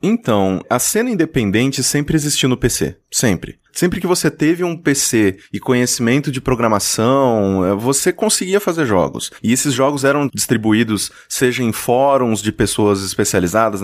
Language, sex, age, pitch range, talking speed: Portuguese, male, 30-49, 110-155 Hz, 145 wpm